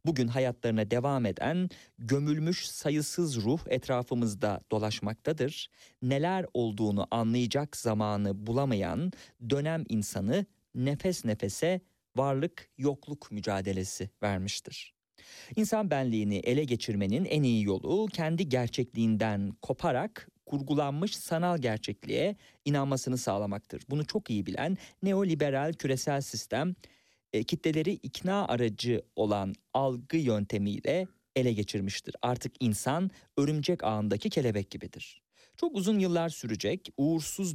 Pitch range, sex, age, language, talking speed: 110-160 Hz, male, 40-59, Turkish, 100 wpm